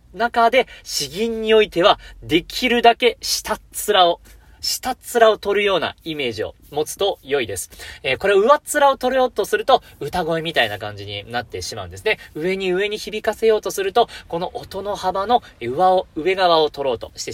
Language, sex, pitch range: Japanese, male, 155-235 Hz